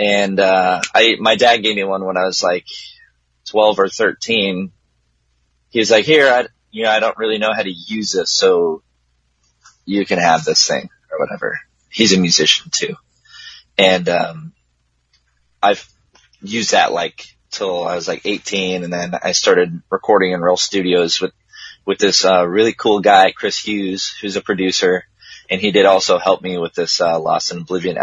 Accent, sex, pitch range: American, male, 75-105 Hz